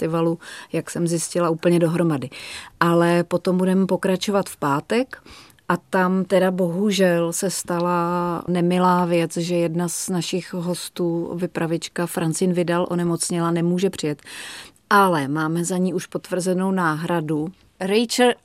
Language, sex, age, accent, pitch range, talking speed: Czech, female, 30-49, native, 165-185 Hz, 125 wpm